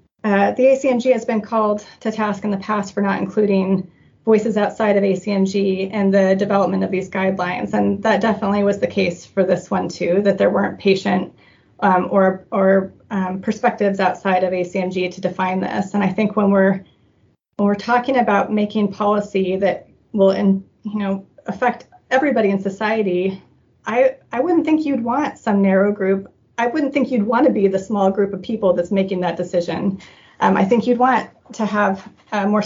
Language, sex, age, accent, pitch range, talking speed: English, female, 30-49, American, 190-220 Hz, 185 wpm